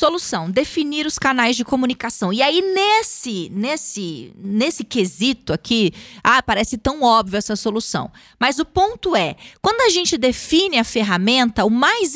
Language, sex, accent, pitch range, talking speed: Portuguese, female, Brazilian, 230-320 Hz, 155 wpm